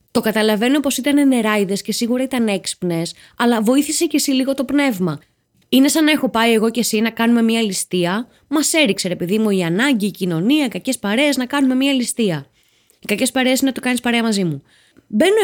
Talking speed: 200 wpm